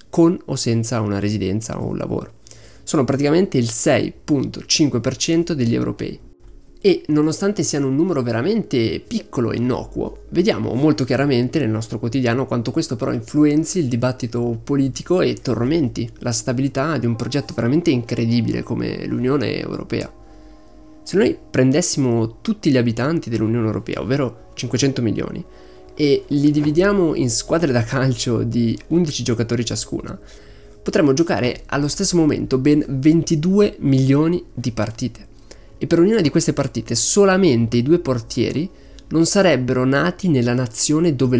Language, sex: Italian, male